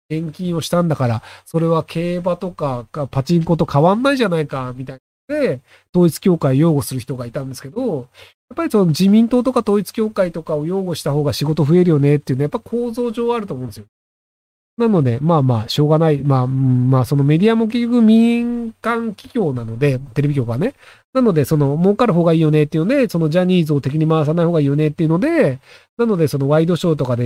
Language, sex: Japanese, male